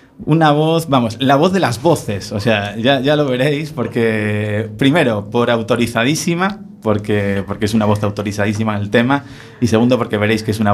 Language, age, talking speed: Spanish, 20-39, 190 wpm